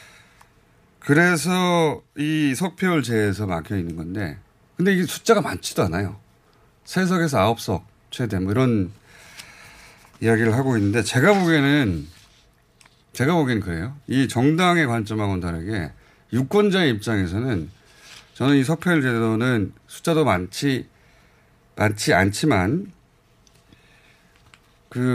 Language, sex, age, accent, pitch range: Korean, male, 30-49, native, 105-155 Hz